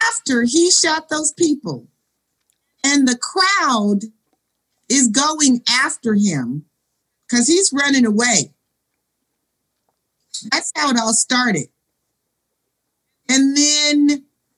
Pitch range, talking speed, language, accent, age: 230-320 Hz, 95 wpm, English, American, 50-69